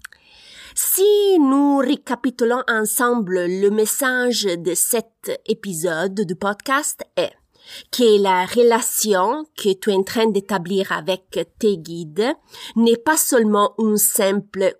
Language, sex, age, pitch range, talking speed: French, female, 30-49, 185-225 Hz, 120 wpm